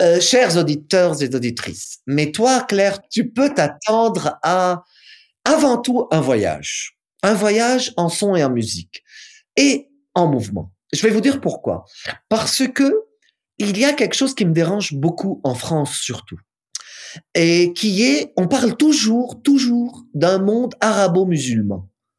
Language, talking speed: French, 150 wpm